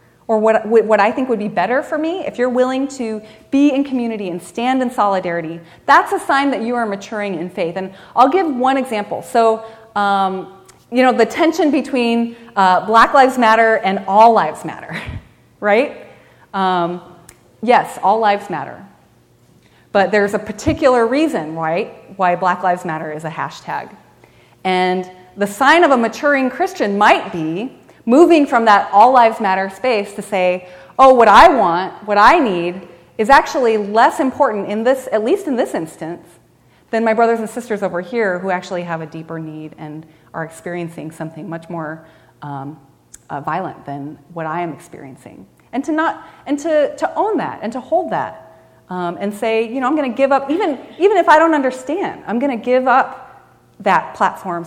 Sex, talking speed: female, 180 wpm